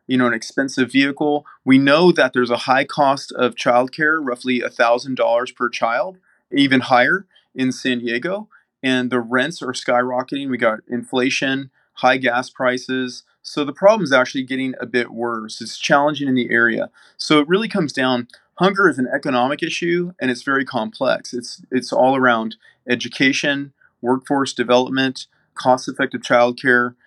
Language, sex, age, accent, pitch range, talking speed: English, male, 30-49, American, 120-135 Hz, 155 wpm